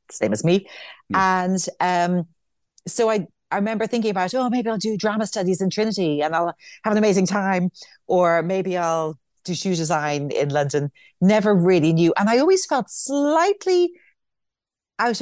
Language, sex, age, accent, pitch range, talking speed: English, female, 40-59, British, 140-210 Hz, 165 wpm